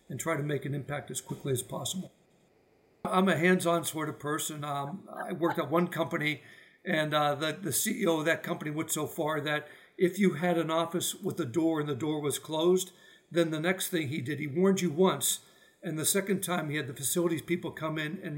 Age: 60-79